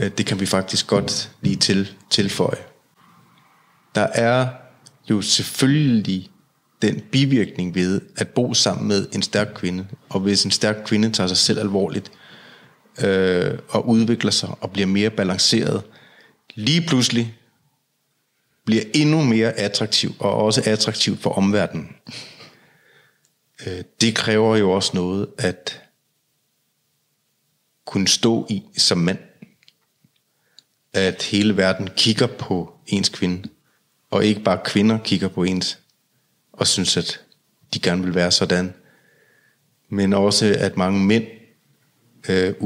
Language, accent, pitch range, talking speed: Danish, native, 95-115 Hz, 120 wpm